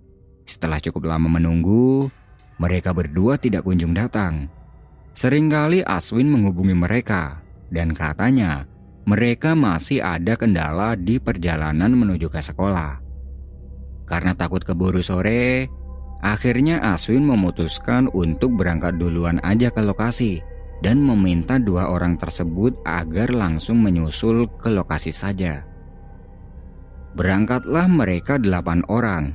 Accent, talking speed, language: native, 105 wpm, Indonesian